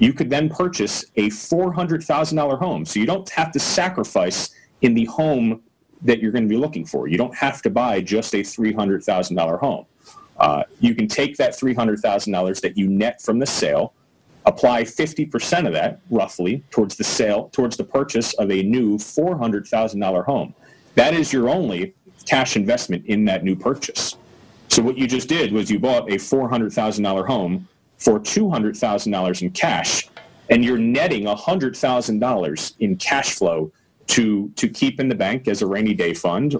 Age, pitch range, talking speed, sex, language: 30-49, 105-145 Hz, 165 wpm, male, English